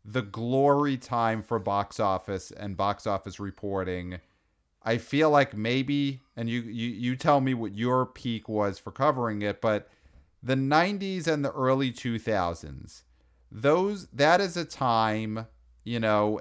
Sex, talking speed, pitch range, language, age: male, 150 wpm, 100-140 Hz, English, 40-59